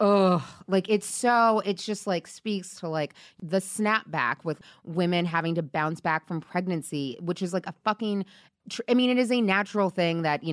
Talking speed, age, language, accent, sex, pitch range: 195 wpm, 20-39, English, American, female, 165-225 Hz